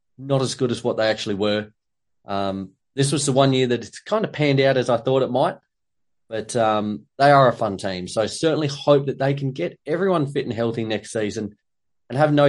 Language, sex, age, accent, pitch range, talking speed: English, male, 20-39, Australian, 115-150 Hz, 230 wpm